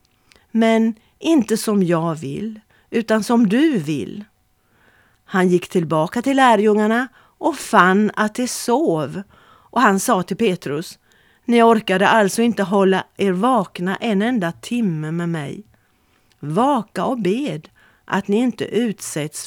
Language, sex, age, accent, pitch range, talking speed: Swedish, female, 40-59, native, 155-220 Hz, 135 wpm